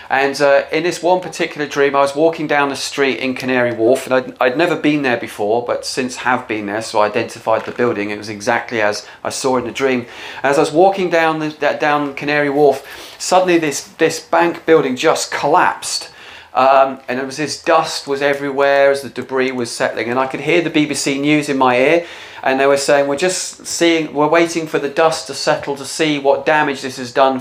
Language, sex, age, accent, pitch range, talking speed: English, male, 40-59, British, 130-160 Hz, 225 wpm